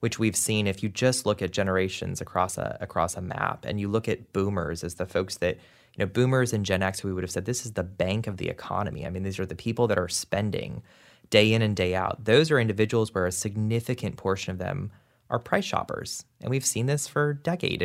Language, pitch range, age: English, 100-120 Hz, 20-39